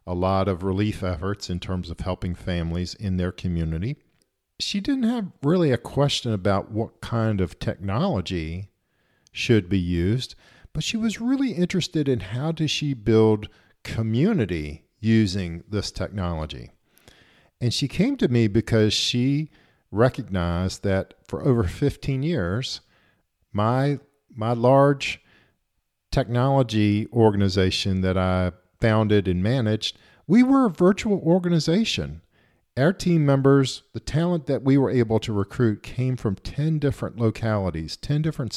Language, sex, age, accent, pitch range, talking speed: English, male, 50-69, American, 95-140 Hz, 135 wpm